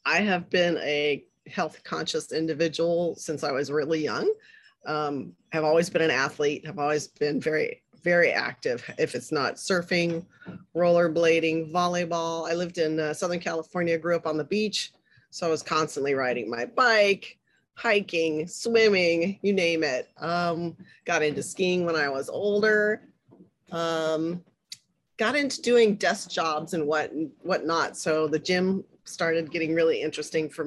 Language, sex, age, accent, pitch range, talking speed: English, female, 30-49, American, 155-180 Hz, 150 wpm